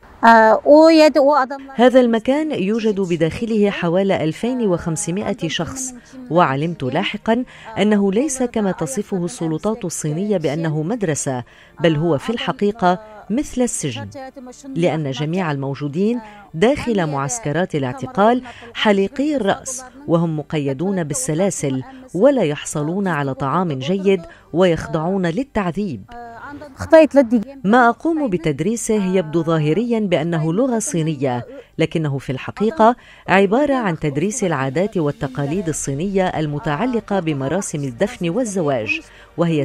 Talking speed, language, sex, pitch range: 95 wpm, Arabic, female, 155-225 Hz